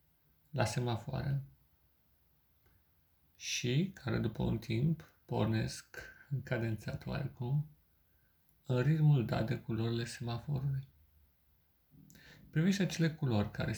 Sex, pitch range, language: male, 110-140 Hz, Romanian